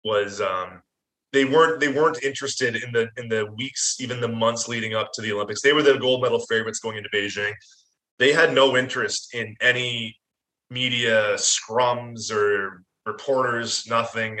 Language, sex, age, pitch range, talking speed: English, male, 20-39, 110-130 Hz, 165 wpm